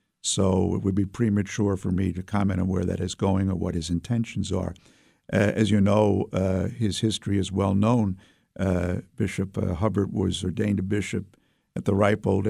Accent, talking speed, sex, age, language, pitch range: American, 190 wpm, male, 50-69, English, 95-110 Hz